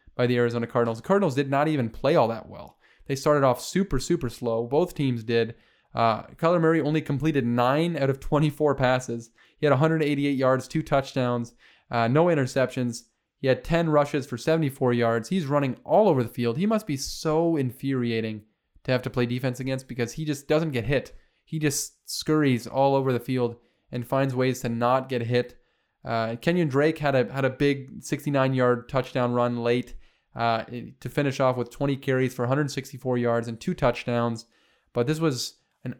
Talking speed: 190 wpm